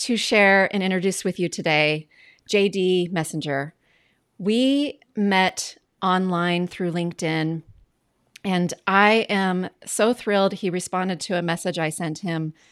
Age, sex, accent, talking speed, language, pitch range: 30-49, female, American, 125 wpm, English, 180-220 Hz